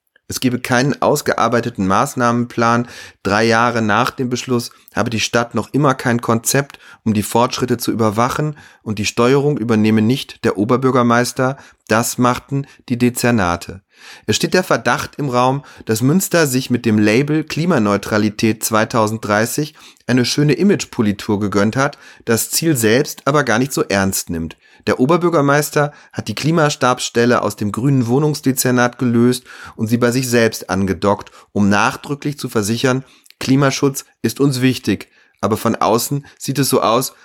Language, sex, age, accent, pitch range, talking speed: German, male, 30-49, German, 110-135 Hz, 150 wpm